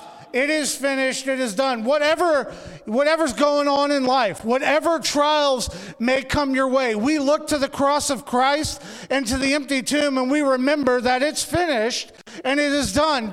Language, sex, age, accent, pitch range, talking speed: English, male, 40-59, American, 245-295 Hz, 180 wpm